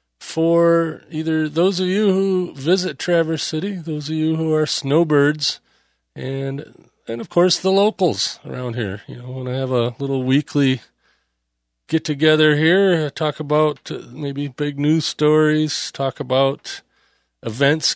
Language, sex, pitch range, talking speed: English, male, 140-170 Hz, 145 wpm